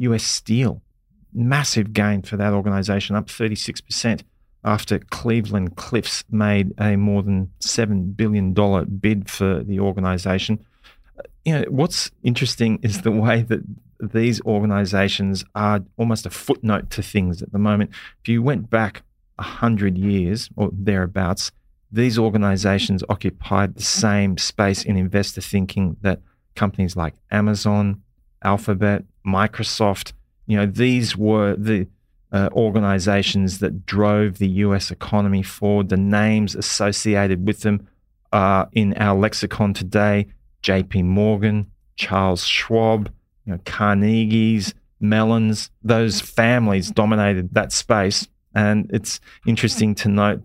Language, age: English, 40-59